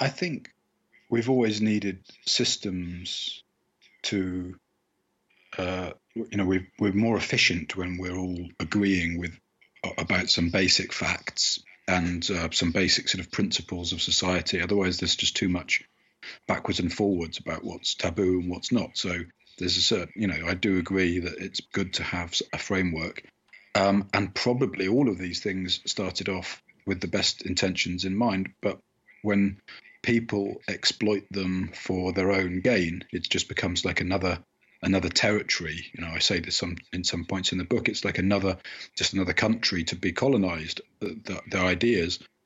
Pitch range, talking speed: 90-105 Hz, 165 wpm